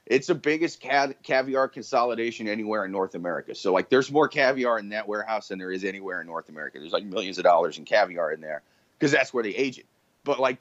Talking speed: 240 wpm